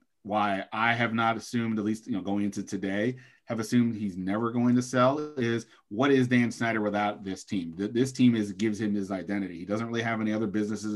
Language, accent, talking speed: English, American, 225 wpm